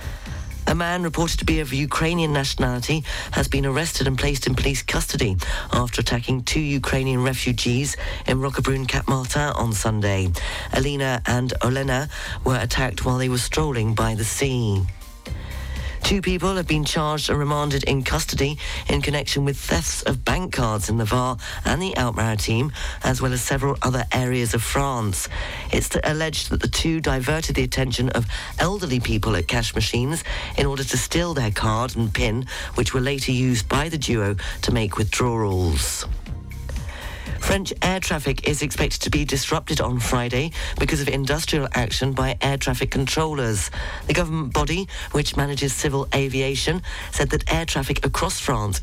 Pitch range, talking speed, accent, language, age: 110-140 Hz, 160 wpm, British, English, 40-59